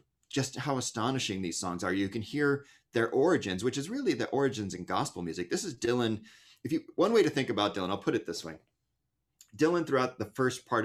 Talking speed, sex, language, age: 210 wpm, male, English, 30-49